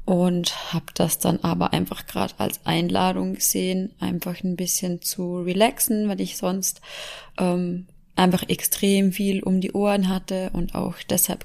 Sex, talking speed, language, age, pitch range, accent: female, 150 wpm, German, 20-39, 170-210 Hz, German